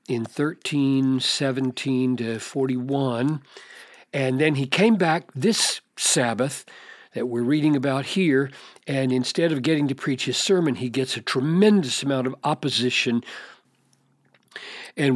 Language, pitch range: English, 130-180 Hz